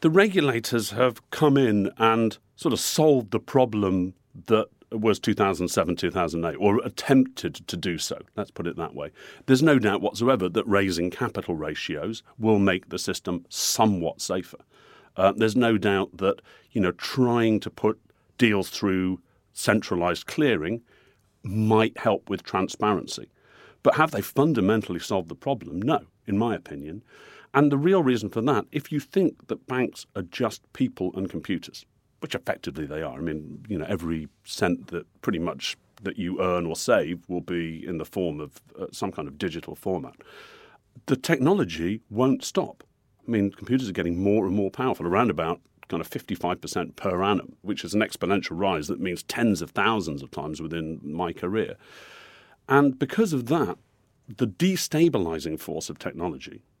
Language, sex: English, male